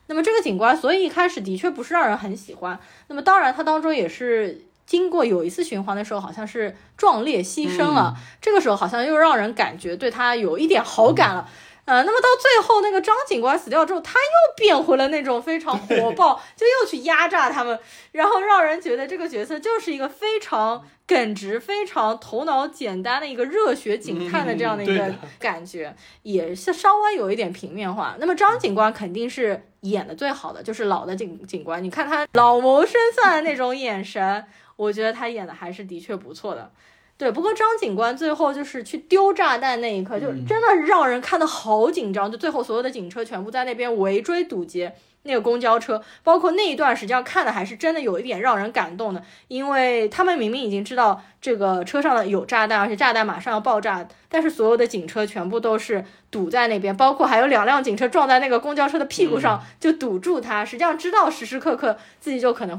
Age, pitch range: 20-39, 210-345 Hz